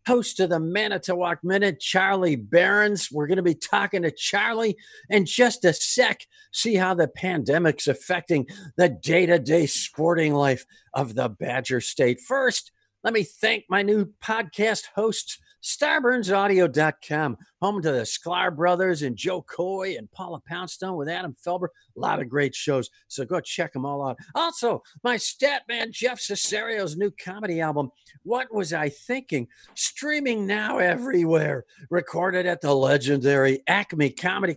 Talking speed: 150 wpm